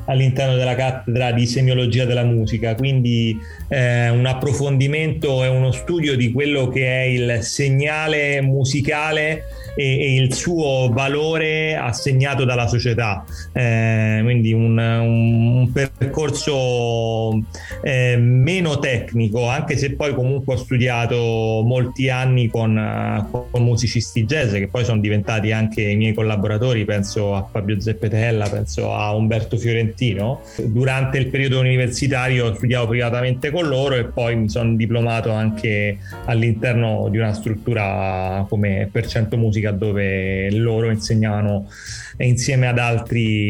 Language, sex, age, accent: Italian, male, 30-49, native